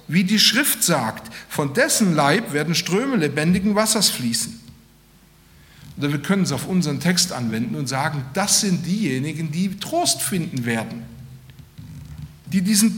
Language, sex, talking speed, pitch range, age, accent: German, male, 145 wpm, 145-190 Hz, 60-79, German